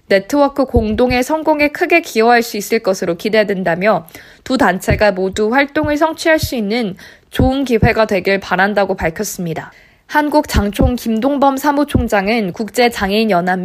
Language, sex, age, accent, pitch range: Korean, female, 20-39, native, 195-265 Hz